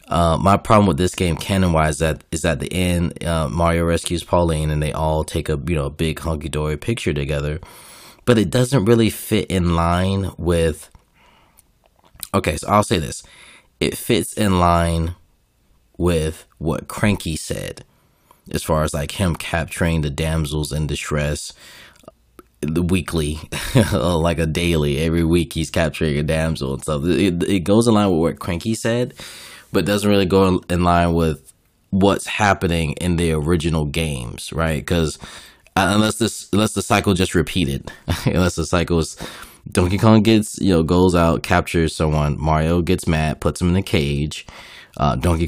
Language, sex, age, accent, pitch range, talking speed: English, male, 20-39, American, 80-95 Hz, 170 wpm